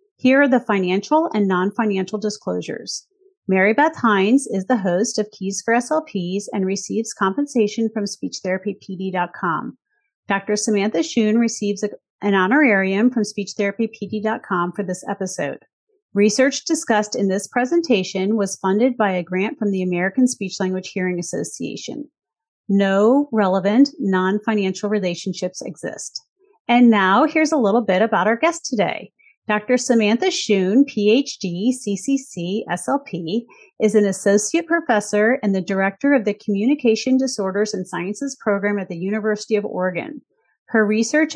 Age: 30-49